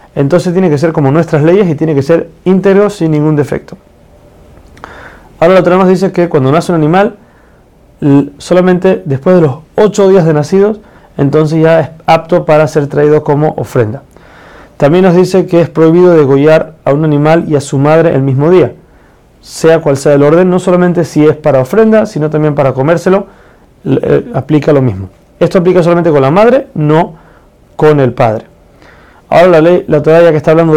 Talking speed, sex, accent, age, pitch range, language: 185 wpm, male, Argentinian, 30-49, 145-175 Hz, Spanish